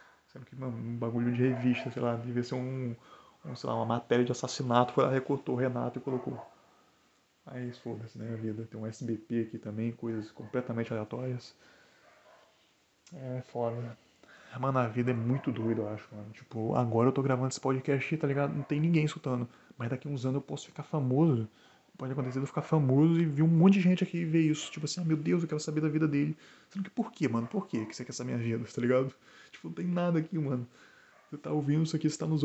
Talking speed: 235 wpm